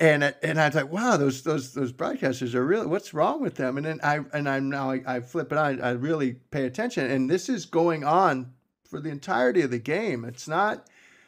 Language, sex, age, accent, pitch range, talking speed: English, male, 50-69, American, 130-165 Hz, 235 wpm